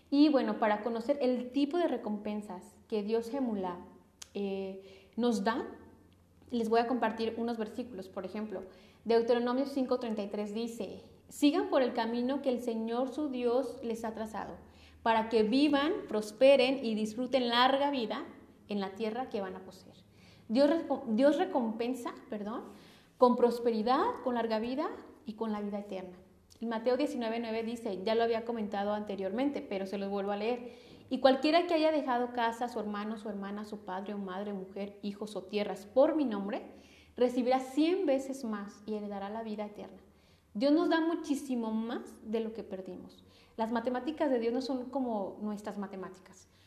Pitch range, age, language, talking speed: 210-255 Hz, 30-49, Spanish, 165 wpm